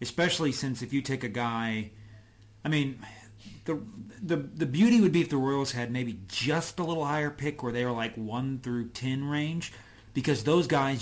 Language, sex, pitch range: English, male, 115-145 Hz